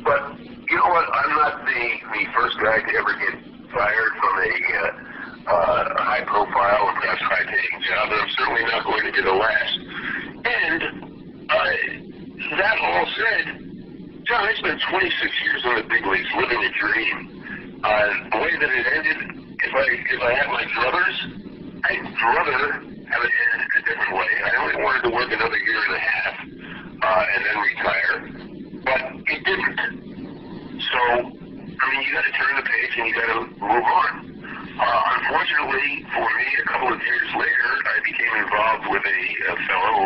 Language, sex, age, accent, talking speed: English, male, 50-69, American, 175 wpm